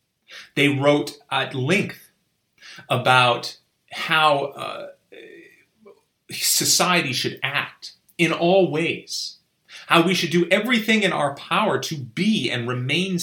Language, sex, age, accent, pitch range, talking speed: English, male, 30-49, American, 125-170 Hz, 115 wpm